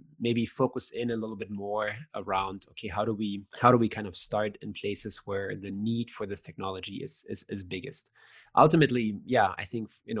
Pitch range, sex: 100-115 Hz, male